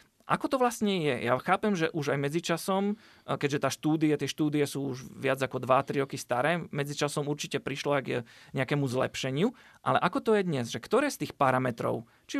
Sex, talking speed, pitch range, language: male, 190 wpm, 130-165 Hz, Slovak